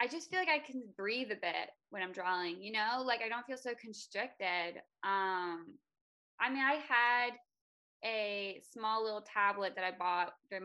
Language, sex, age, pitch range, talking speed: English, female, 20-39, 185-240 Hz, 185 wpm